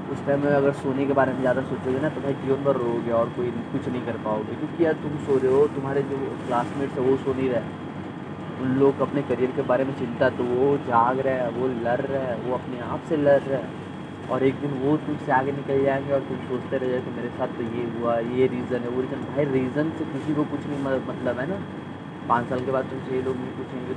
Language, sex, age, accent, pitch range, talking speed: Hindi, male, 20-39, native, 125-145 Hz, 255 wpm